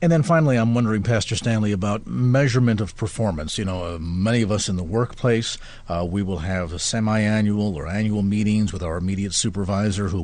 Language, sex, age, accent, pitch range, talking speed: English, male, 50-69, American, 110-140 Hz, 190 wpm